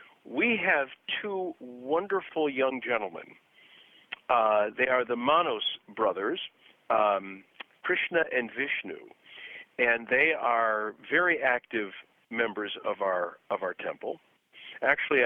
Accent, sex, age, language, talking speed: American, male, 50-69, English, 110 wpm